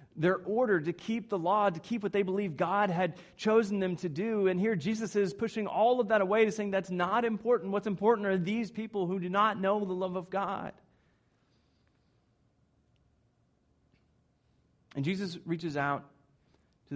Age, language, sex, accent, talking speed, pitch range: 30-49, English, male, American, 175 wpm, 160-215 Hz